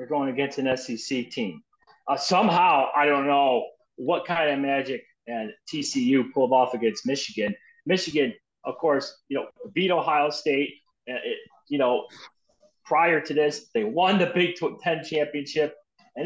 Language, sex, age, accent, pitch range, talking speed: English, male, 30-49, American, 145-240 Hz, 160 wpm